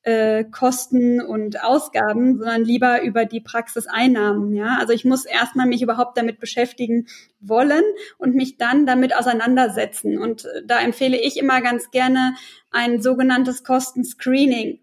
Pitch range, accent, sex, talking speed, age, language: 235-275 Hz, German, female, 135 wpm, 20-39, German